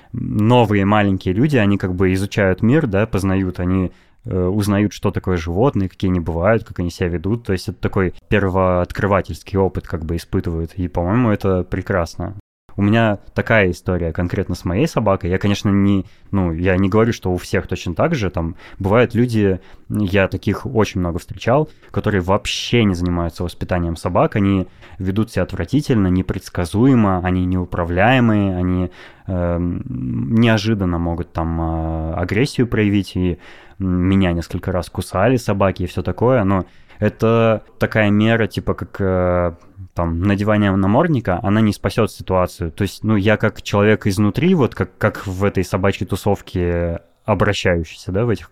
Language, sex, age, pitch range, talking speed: Russian, male, 20-39, 90-105 Hz, 155 wpm